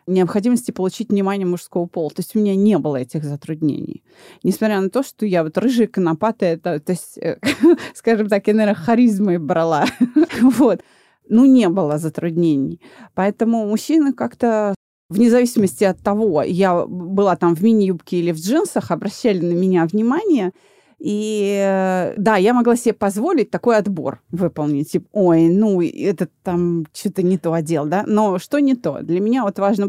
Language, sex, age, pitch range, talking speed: Russian, female, 30-49, 170-225 Hz, 160 wpm